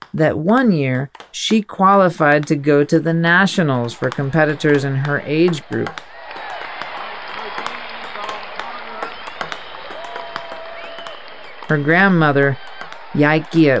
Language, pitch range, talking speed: English, 135-175 Hz, 85 wpm